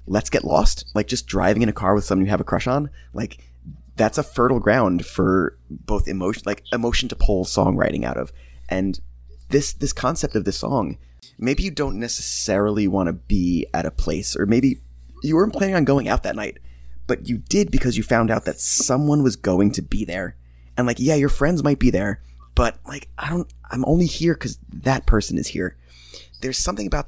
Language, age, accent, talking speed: English, 20-39, American, 210 wpm